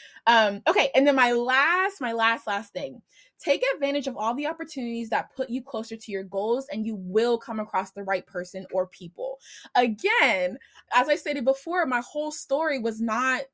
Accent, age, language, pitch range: American, 20-39, English, 210-265 Hz